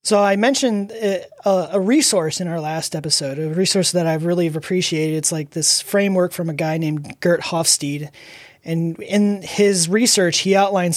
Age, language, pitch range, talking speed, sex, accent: 30-49, English, 165-200 Hz, 170 wpm, male, American